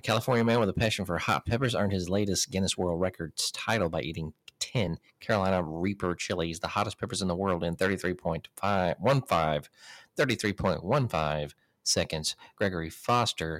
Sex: male